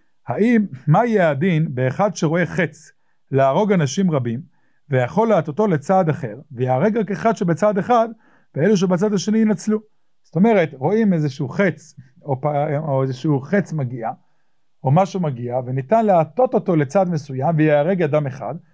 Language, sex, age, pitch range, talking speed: English, male, 50-69, 145-190 Hz, 140 wpm